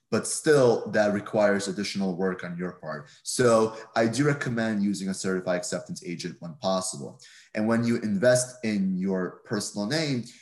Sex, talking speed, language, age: male, 160 wpm, English, 30-49